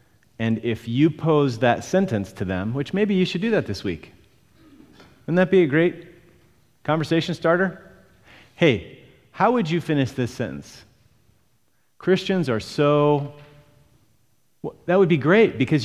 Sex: male